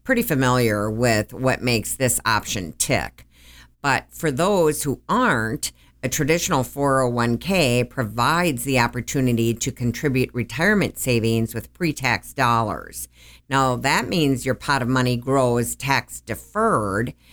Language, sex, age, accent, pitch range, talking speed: English, female, 50-69, American, 115-145 Hz, 125 wpm